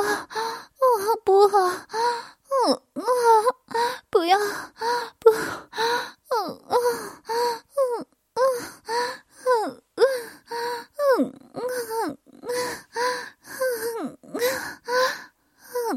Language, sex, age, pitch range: Chinese, female, 10-29, 220-320 Hz